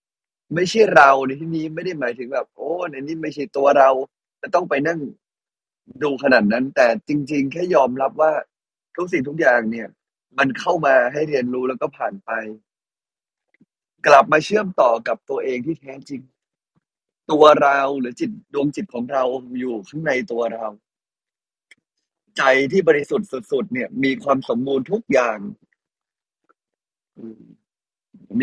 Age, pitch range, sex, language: 30-49, 130-180 Hz, male, Thai